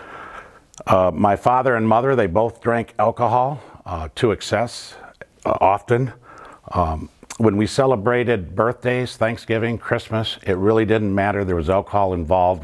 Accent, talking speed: American, 140 wpm